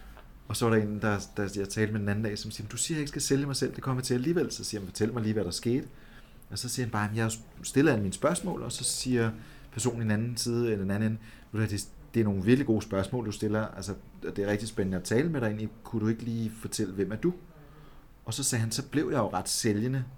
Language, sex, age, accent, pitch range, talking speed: Danish, male, 30-49, native, 100-120 Hz, 280 wpm